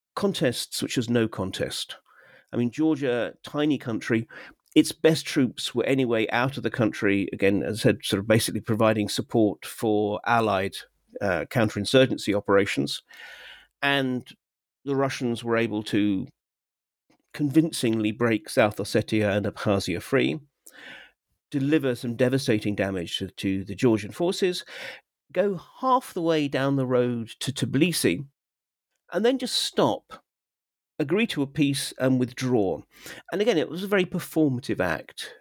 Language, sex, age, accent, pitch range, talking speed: English, male, 50-69, British, 105-160 Hz, 140 wpm